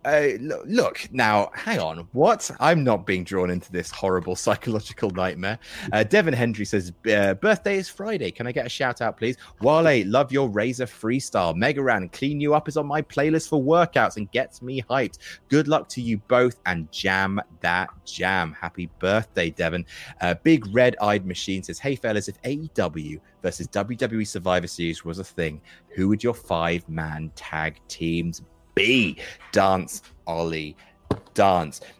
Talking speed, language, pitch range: 165 wpm, English, 85-120 Hz